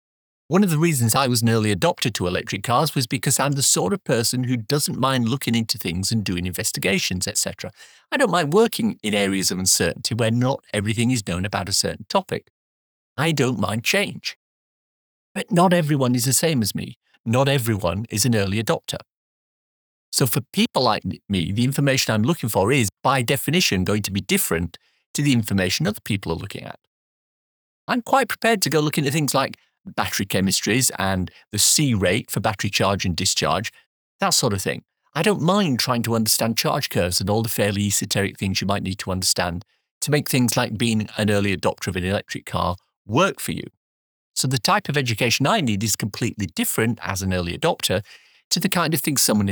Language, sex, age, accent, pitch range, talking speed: English, male, 50-69, British, 100-140 Hz, 200 wpm